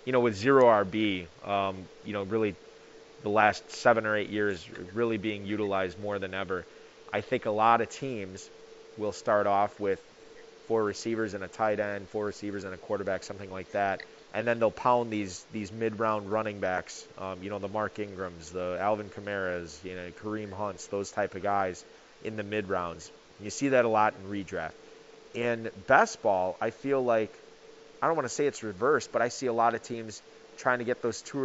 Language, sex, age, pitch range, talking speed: English, male, 30-49, 100-115 Hz, 205 wpm